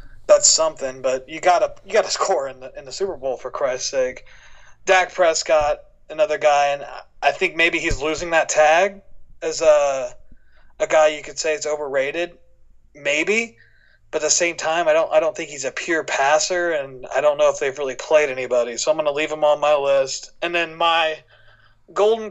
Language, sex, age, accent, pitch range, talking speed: English, male, 30-49, American, 145-185 Hz, 200 wpm